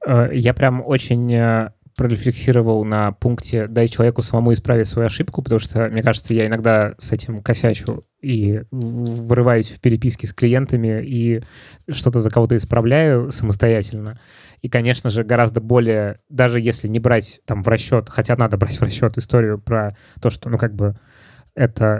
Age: 20-39